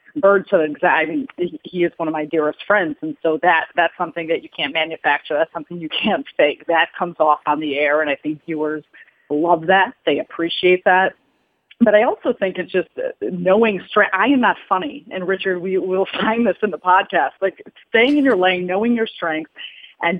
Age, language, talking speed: 30-49, English, 205 wpm